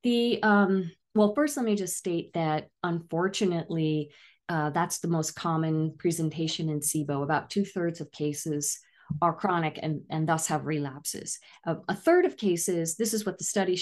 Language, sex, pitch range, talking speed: English, female, 155-205 Hz, 175 wpm